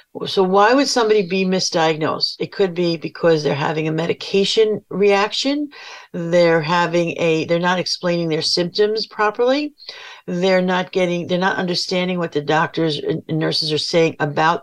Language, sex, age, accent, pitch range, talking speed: English, female, 50-69, American, 165-220 Hz, 155 wpm